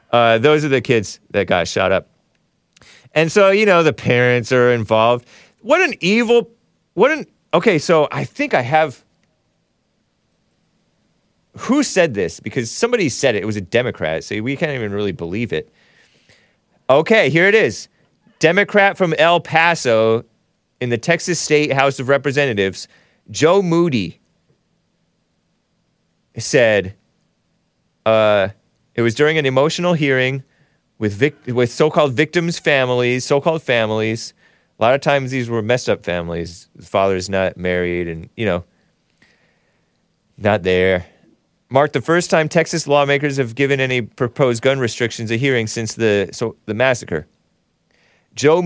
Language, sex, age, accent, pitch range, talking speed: English, male, 30-49, American, 110-155 Hz, 140 wpm